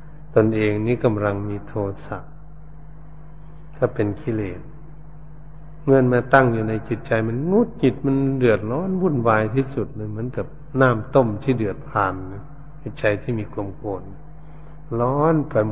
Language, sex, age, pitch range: Thai, male, 60-79, 105-145 Hz